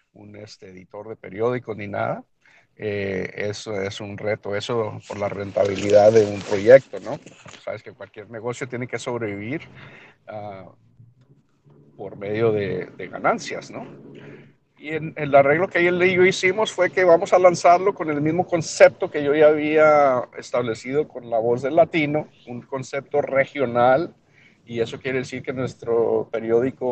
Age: 50-69